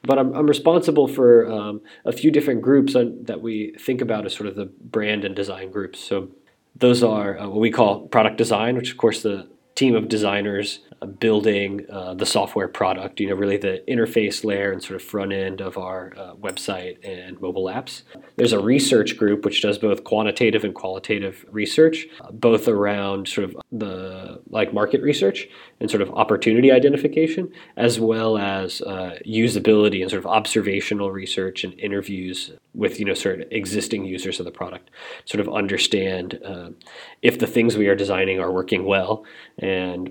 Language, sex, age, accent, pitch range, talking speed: English, male, 20-39, American, 95-115 Hz, 185 wpm